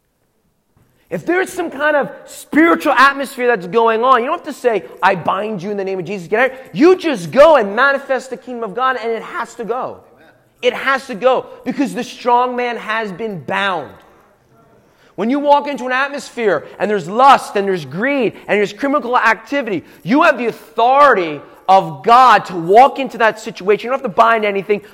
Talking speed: 195 wpm